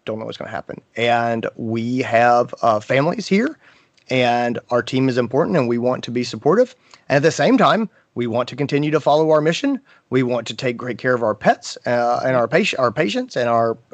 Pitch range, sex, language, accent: 120-145 Hz, male, English, American